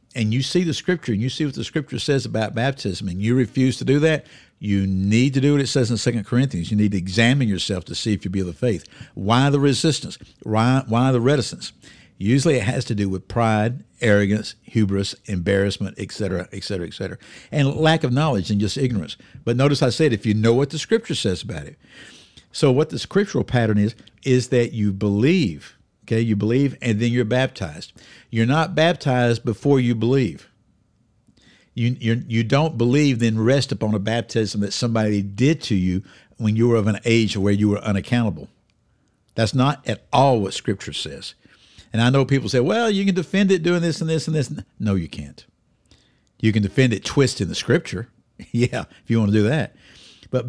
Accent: American